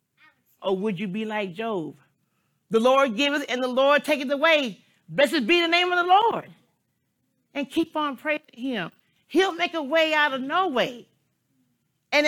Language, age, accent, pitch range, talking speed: English, 40-59, American, 240-315 Hz, 175 wpm